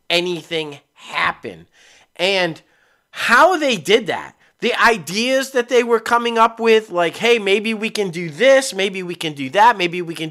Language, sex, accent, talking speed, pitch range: English, male, American, 175 wpm, 175-255 Hz